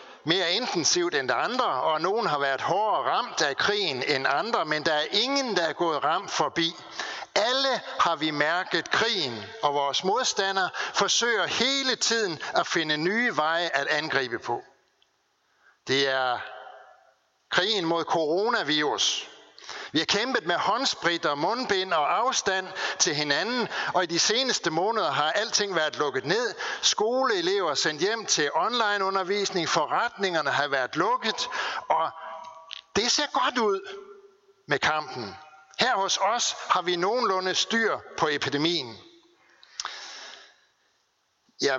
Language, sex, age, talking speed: Danish, male, 60-79, 135 wpm